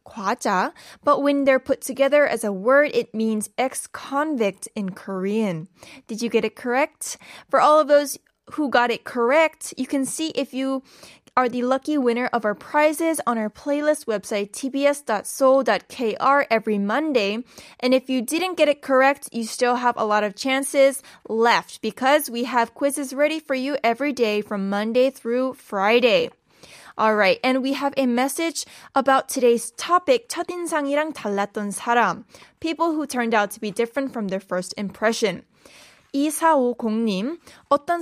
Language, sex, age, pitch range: Korean, female, 10-29, 220-285 Hz